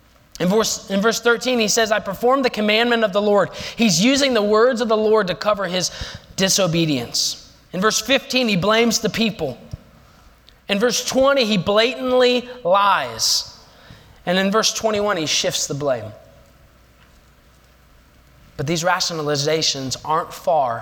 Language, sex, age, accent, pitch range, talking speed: English, male, 20-39, American, 130-200 Hz, 145 wpm